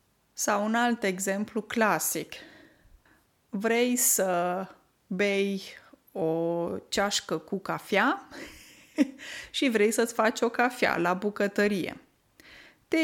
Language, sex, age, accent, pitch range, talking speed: Romanian, female, 20-39, native, 205-275 Hz, 95 wpm